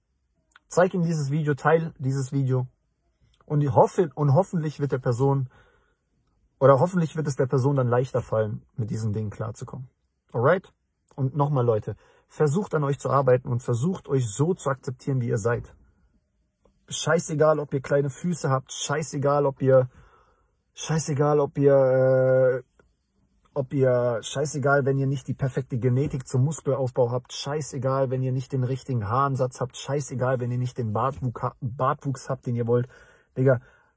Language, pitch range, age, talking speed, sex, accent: English, 120-145 Hz, 40-59, 155 wpm, male, German